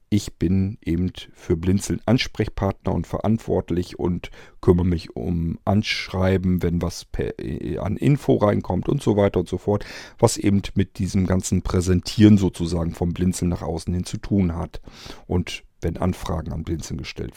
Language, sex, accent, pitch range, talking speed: German, male, German, 90-110 Hz, 155 wpm